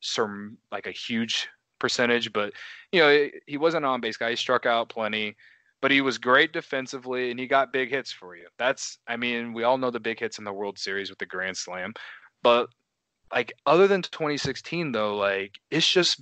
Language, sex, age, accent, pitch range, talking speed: English, male, 20-39, American, 110-140 Hz, 205 wpm